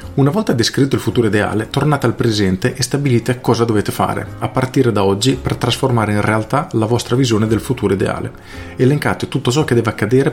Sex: male